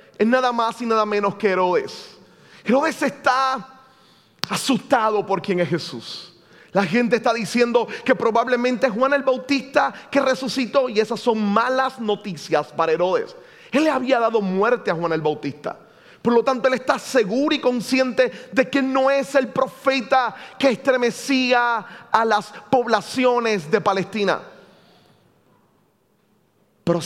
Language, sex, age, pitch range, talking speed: Spanish, male, 30-49, 195-255 Hz, 145 wpm